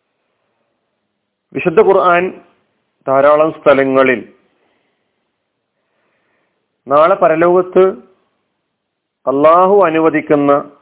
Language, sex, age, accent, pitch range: Malayalam, male, 40-59, native, 140-190 Hz